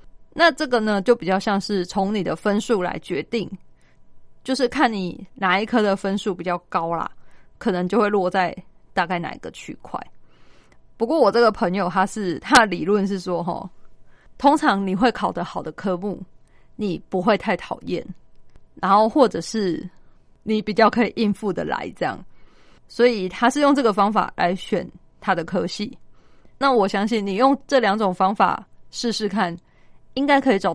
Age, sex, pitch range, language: 20-39, female, 185-230 Hz, Chinese